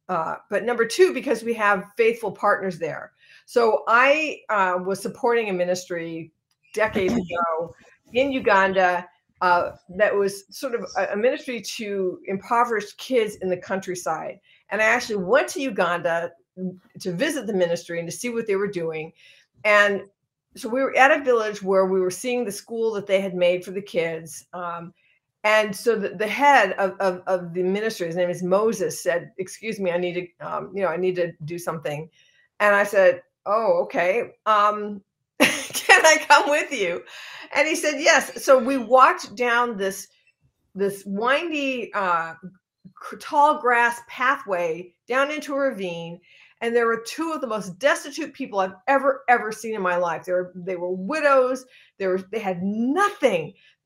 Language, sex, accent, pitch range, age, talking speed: English, female, American, 180-245 Hz, 50-69, 175 wpm